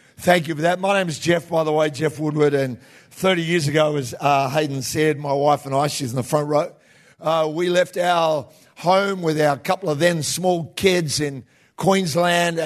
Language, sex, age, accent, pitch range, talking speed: English, male, 50-69, Australian, 145-180 Hz, 210 wpm